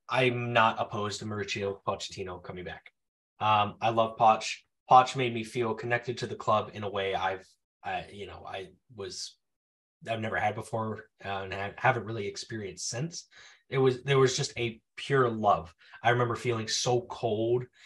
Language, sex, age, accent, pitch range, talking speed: English, male, 20-39, American, 110-140 Hz, 170 wpm